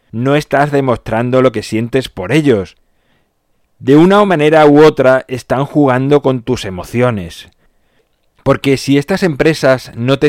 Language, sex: Spanish, male